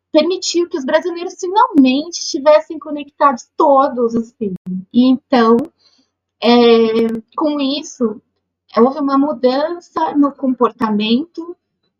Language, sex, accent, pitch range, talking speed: Portuguese, female, Brazilian, 230-280 Hz, 100 wpm